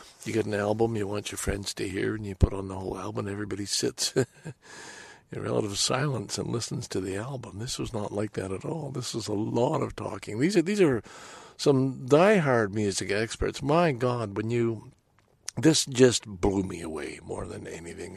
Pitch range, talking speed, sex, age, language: 95-125 Hz, 200 wpm, male, 60-79, English